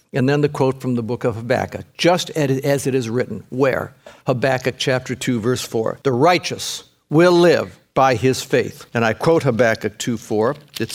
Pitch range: 120-155 Hz